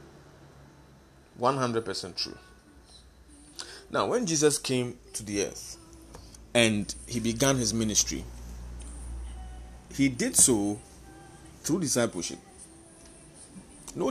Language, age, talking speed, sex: English, 30-49, 80 wpm, male